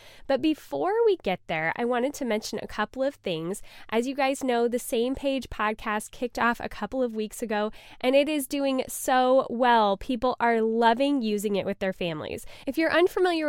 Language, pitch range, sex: English, 215-275 Hz, female